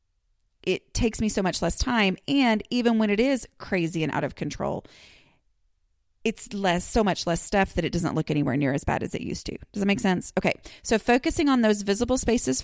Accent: American